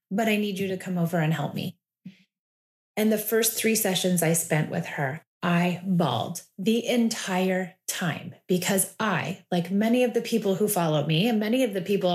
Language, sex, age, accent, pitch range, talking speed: English, female, 30-49, American, 180-235 Hz, 195 wpm